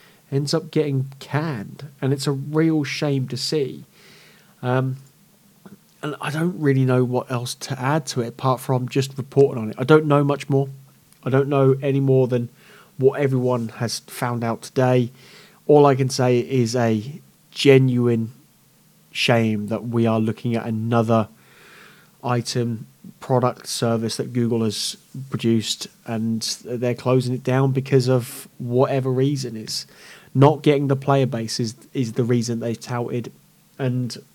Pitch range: 125-145 Hz